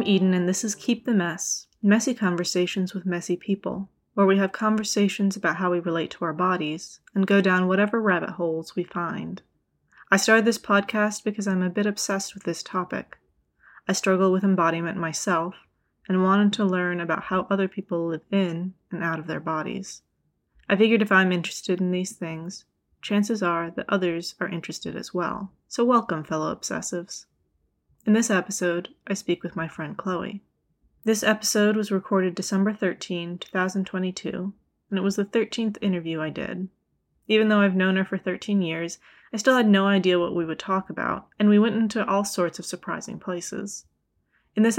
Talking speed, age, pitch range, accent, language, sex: 180 wpm, 20-39, 180-205 Hz, American, English, female